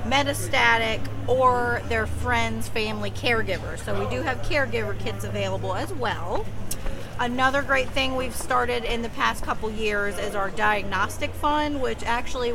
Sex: female